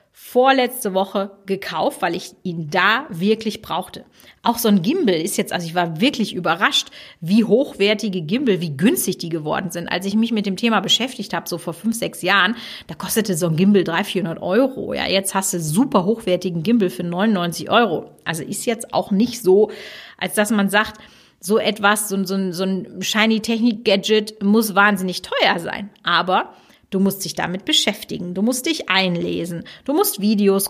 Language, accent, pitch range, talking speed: German, German, 185-230 Hz, 180 wpm